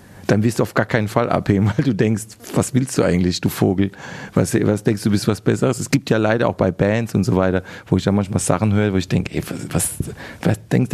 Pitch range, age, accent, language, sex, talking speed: 105-135 Hz, 40-59, German, German, male, 270 wpm